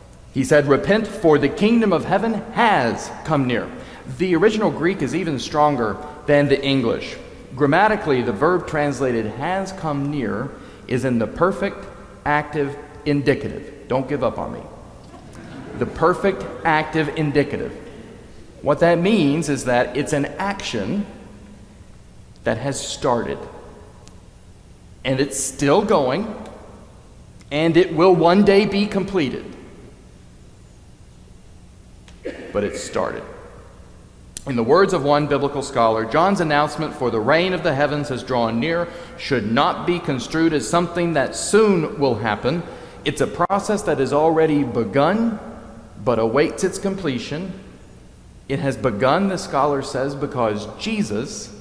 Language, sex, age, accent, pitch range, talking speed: English, male, 40-59, American, 125-170 Hz, 135 wpm